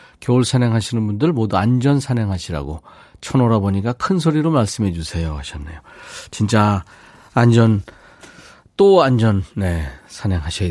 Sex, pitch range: male, 95-145 Hz